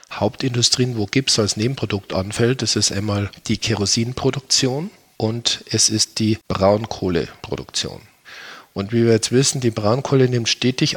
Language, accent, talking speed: German, German, 135 wpm